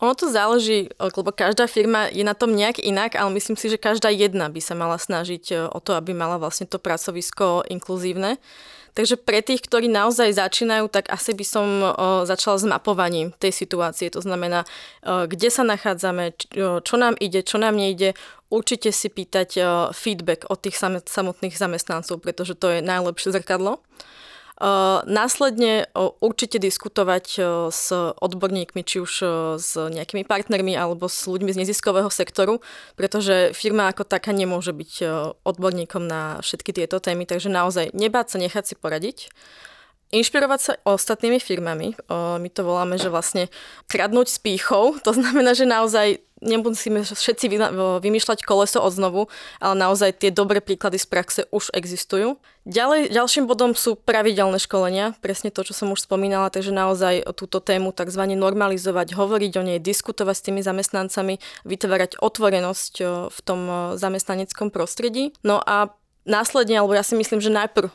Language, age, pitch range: Slovak, 20-39, 185-215 Hz